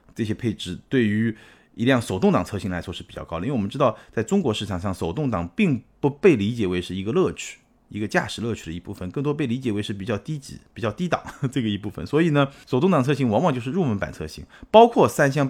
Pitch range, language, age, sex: 90-135 Hz, Chinese, 30-49, male